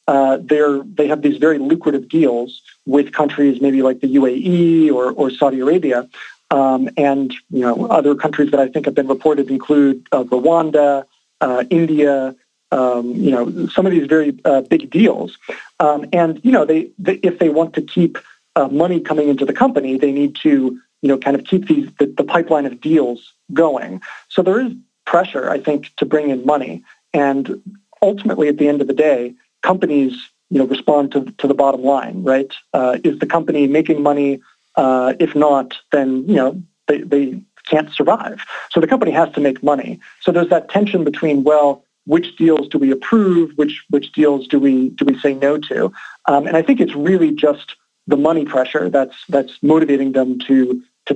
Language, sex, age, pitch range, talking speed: Hebrew, male, 40-59, 135-160 Hz, 195 wpm